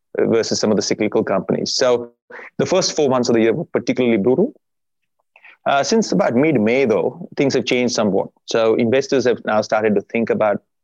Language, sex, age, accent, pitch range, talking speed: English, male, 30-49, Indian, 110-135 Hz, 195 wpm